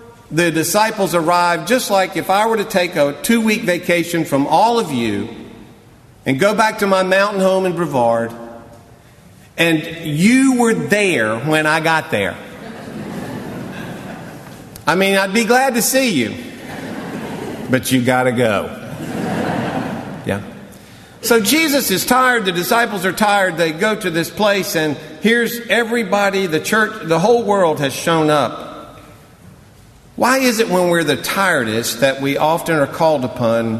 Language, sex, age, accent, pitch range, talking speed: English, male, 50-69, American, 125-195 Hz, 150 wpm